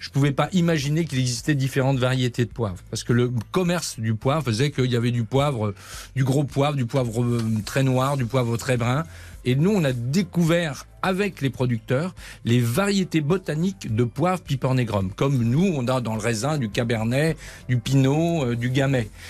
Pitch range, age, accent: 115-150 Hz, 40-59, French